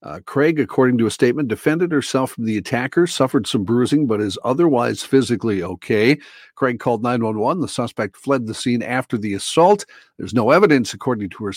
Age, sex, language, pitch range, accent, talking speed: 50-69, male, English, 110-145 Hz, American, 185 wpm